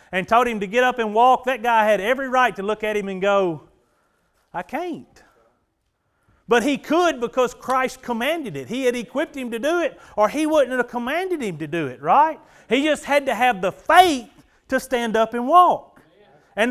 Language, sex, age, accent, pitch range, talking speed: English, male, 40-59, American, 210-270 Hz, 210 wpm